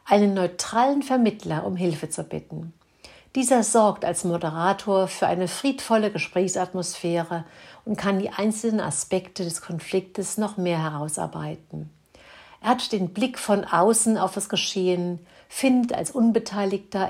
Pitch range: 170-210 Hz